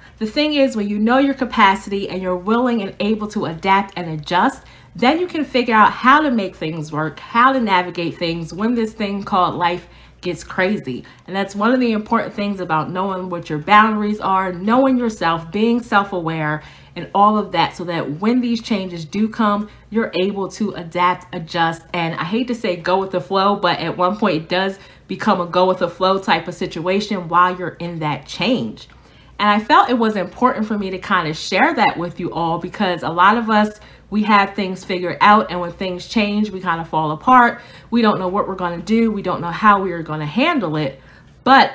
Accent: American